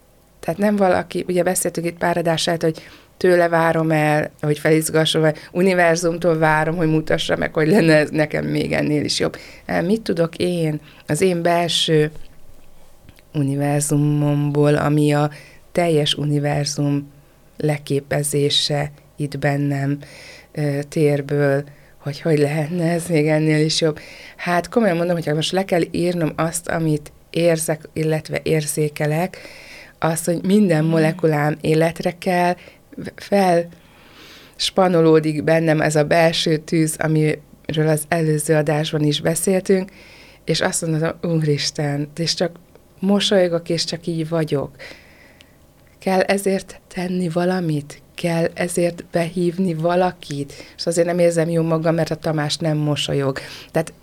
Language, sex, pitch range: Hungarian, female, 150-175 Hz